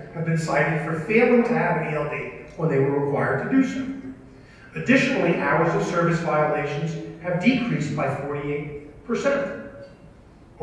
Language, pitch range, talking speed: English, 170-230 Hz, 140 wpm